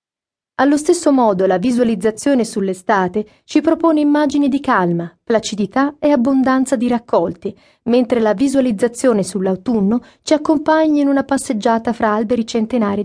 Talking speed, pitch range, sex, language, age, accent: 130 wpm, 215-260 Hz, female, Italian, 40-59, native